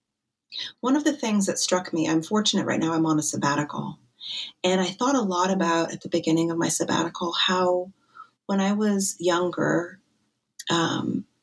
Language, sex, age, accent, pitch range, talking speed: English, female, 30-49, American, 160-195 Hz, 175 wpm